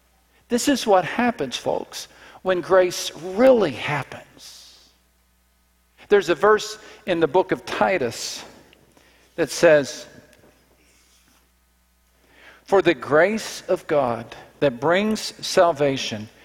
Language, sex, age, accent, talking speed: English, male, 50-69, American, 100 wpm